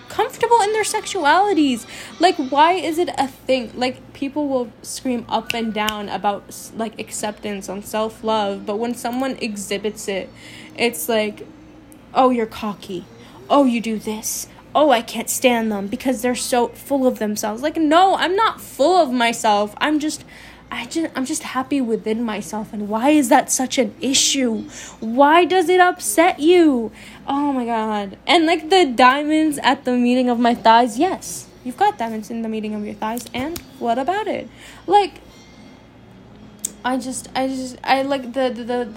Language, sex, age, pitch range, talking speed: English, female, 10-29, 225-285 Hz, 170 wpm